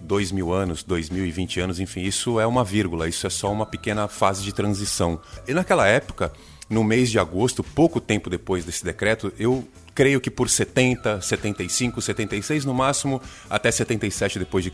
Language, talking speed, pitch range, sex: Portuguese, 170 wpm, 95-125 Hz, male